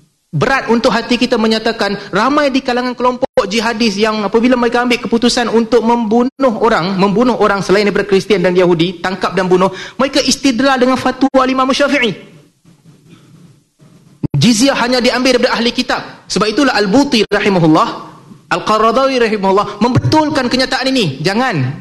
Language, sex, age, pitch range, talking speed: Malay, male, 30-49, 160-230 Hz, 140 wpm